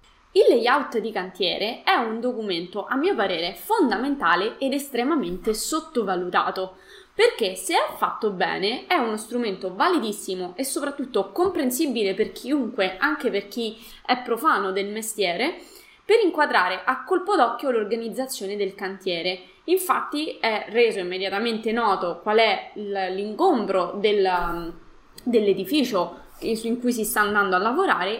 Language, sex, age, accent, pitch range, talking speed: Italian, female, 20-39, native, 200-270 Hz, 125 wpm